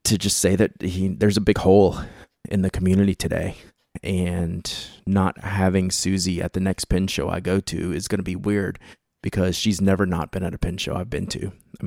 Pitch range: 90-100 Hz